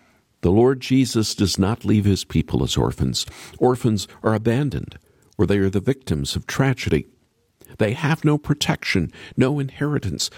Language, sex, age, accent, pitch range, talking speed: English, male, 50-69, American, 95-135 Hz, 150 wpm